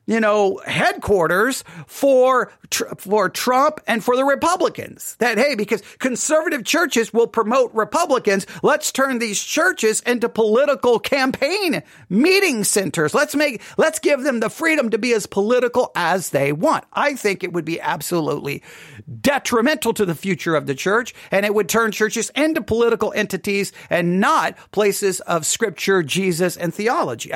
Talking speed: 155 wpm